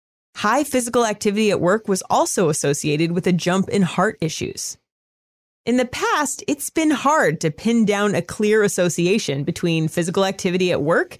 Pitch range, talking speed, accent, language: 175-250 Hz, 165 wpm, American, English